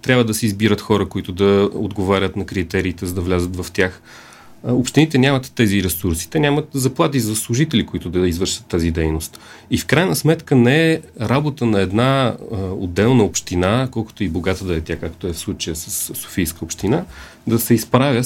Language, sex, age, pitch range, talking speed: Bulgarian, male, 30-49, 90-120 Hz, 185 wpm